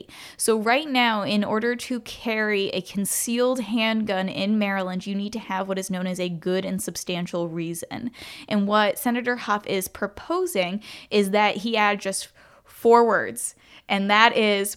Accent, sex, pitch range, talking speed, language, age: American, female, 190-225 Hz, 165 wpm, English, 10-29